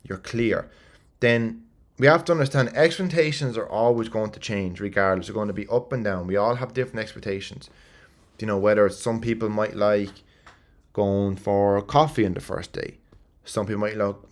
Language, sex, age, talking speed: English, male, 20-39, 190 wpm